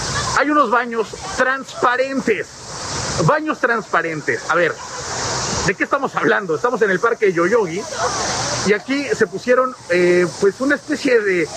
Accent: Mexican